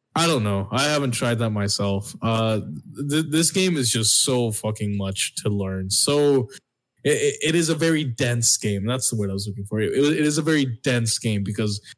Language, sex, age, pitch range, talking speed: English, male, 20-39, 110-135 Hz, 210 wpm